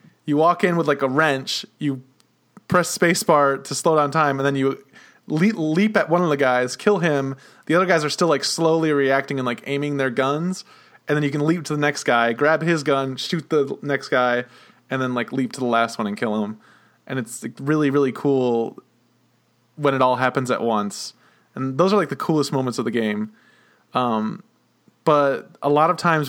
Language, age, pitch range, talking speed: English, 20-39, 130-160 Hz, 210 wpm